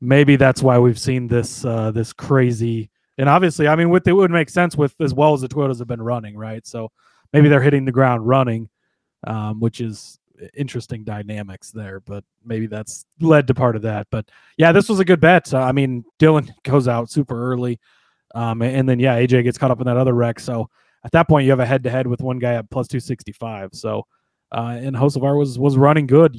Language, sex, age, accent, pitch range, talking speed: English, male, 20-39, American, 120-150 Hz, 230 wpm